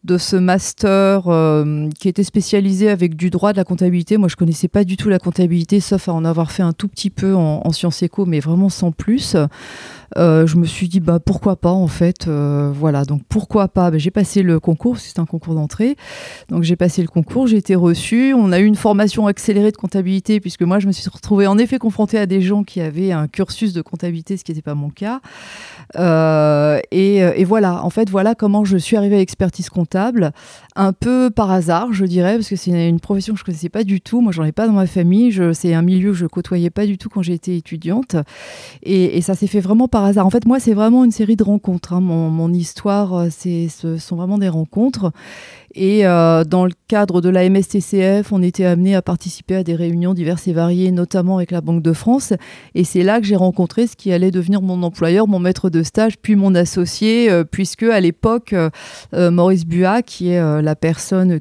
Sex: female